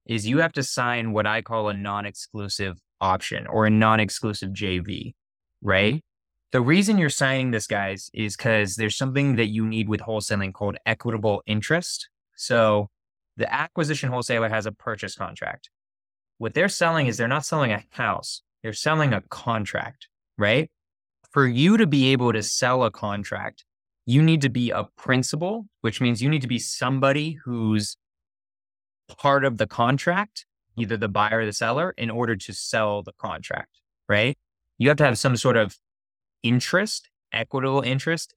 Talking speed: 165 wpm